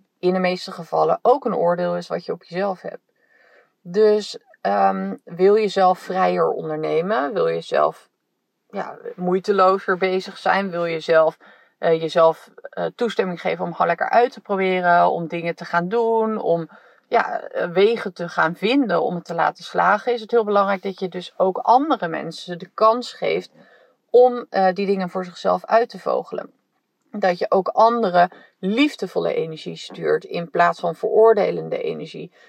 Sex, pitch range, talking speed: female, 175-225 Hz, 170 wpm